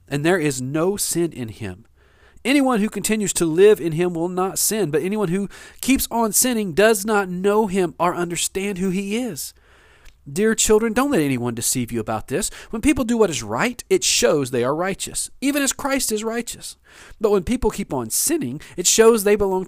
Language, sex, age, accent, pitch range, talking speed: English, male, 40-59, American, 140-220 Hz, 205 wpm